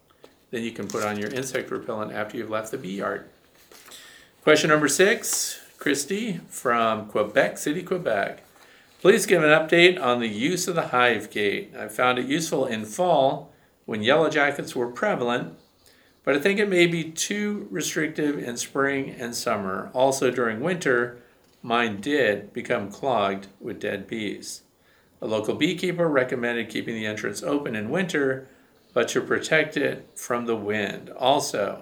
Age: 50-69